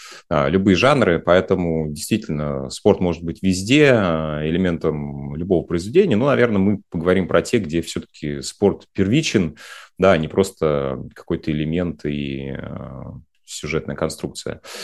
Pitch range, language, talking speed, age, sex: 75-95 Hz, Russian, 115 wpm, 30-49, male